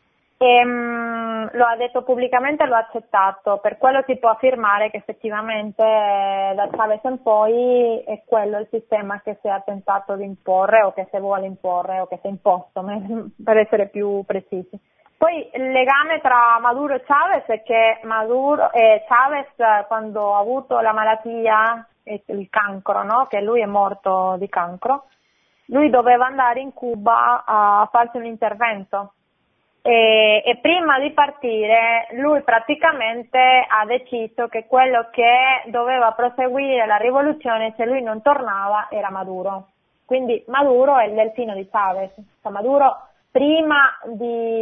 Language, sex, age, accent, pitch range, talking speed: Italian, female, 20-39, native, 205-245 Hz, 155 wpm